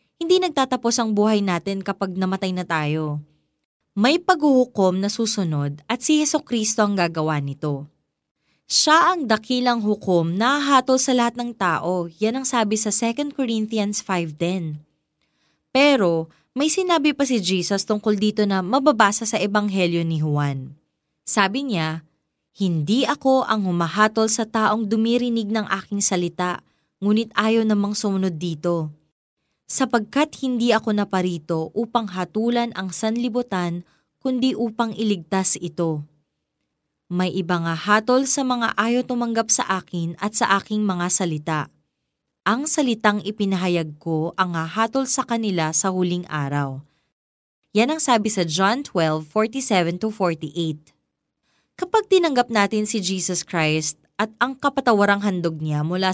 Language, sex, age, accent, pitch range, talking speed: Filipino, female, 20-39, native, 170-235 Hz, 135 wpm